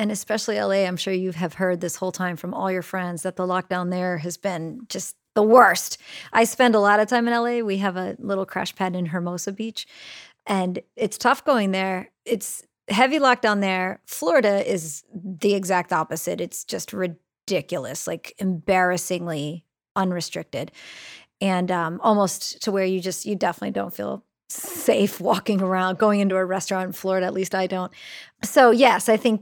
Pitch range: 180-210 Hz